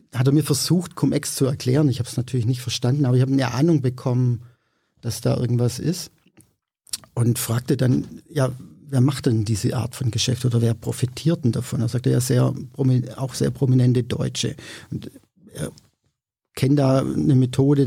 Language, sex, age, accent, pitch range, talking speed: German, male, 50-69, German, 120-135 Hz, 180 wpm